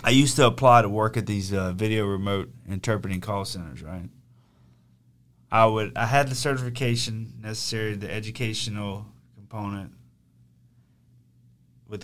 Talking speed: 130 wpm